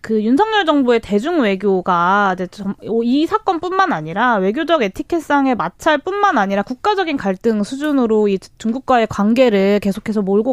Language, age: Korean, 20-39